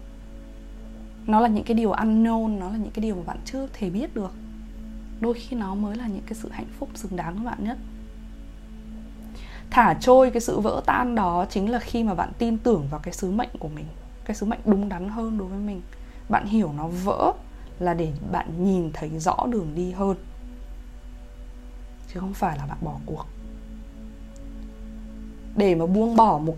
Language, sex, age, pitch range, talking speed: Vietnamese, female, 20-39, 150-225 Hz, 195 wpm